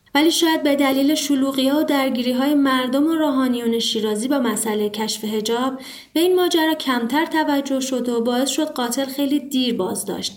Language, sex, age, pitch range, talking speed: Persian, female, 30-49, 230-310 Hz, 170 wpm